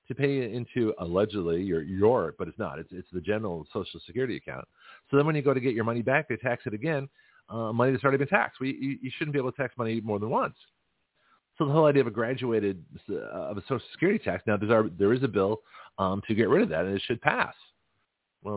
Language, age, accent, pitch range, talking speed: English, 40-59, American, 90-135 Hz, 255 wpm